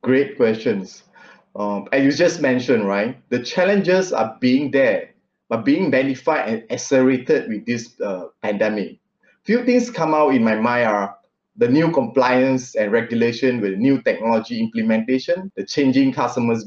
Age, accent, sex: 20-39, Malaysian, male